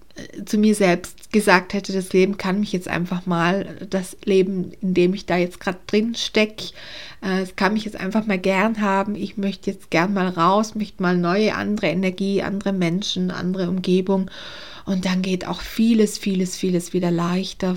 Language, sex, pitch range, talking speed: German, female, 180-200 Hz, 180 wpm